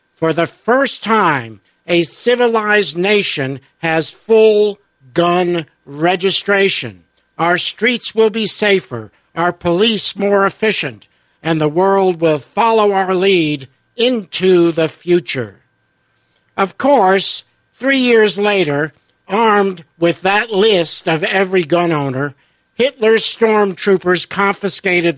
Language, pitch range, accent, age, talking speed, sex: English, 155-200 Hz, American, 60-79, 110 wpm, male